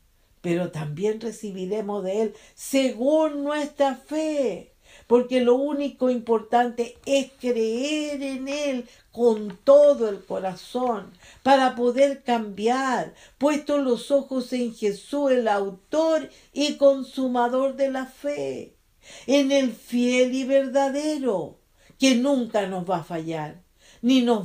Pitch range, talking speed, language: 205-265 Hz, 120 wpm, English